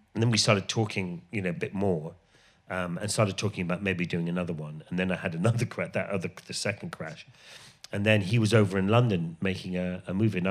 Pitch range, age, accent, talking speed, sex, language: 90-115 Hz, 40-59, British, 235 wpm, male, English